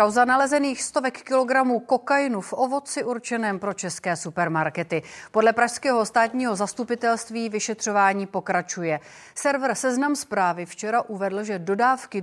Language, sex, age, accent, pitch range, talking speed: Czech, female, 40-59, native, 185-245 Hz, 120 wpm